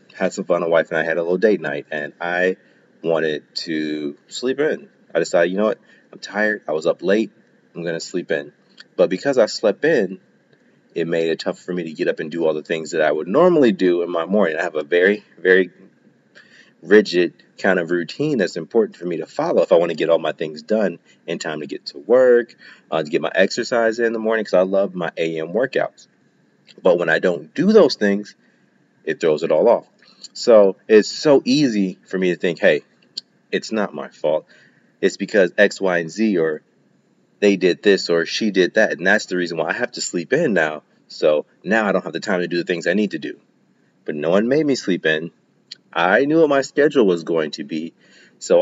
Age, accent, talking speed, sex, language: 30-49, American, 230 wpm, male, English